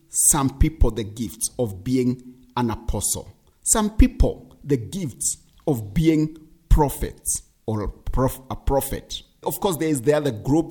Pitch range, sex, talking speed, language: 125-165 Hz, male, 145 wpm, English